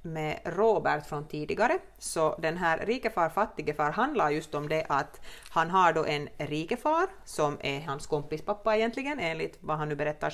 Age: 30-49